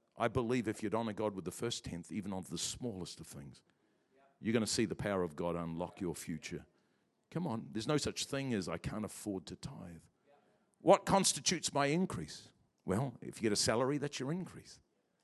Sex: male